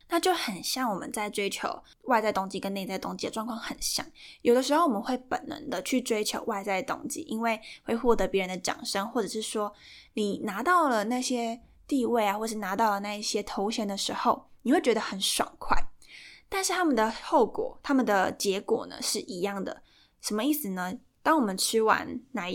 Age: 10-29